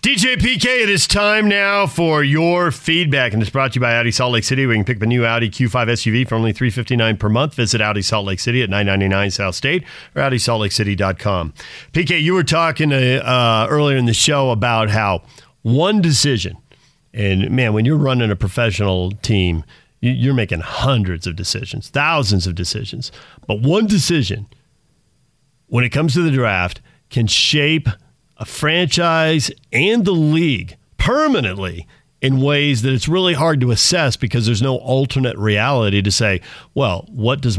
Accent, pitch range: American, 105-140 Hz